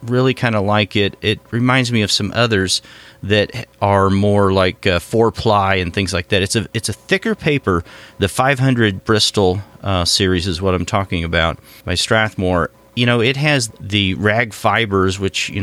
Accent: American